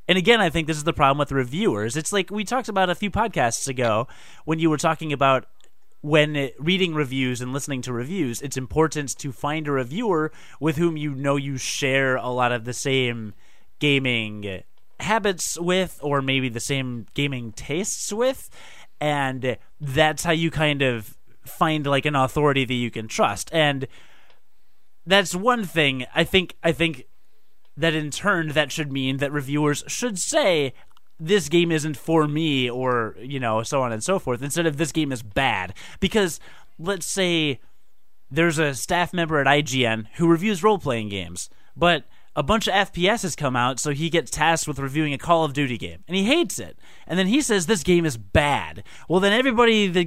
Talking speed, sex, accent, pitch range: 190 wpm, male, American, 135-180 Hz